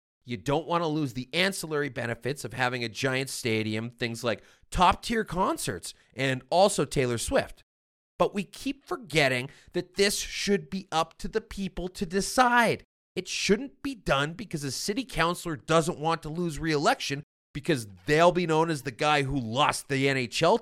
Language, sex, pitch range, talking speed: English, male, 145-220 Hz, 170 wpm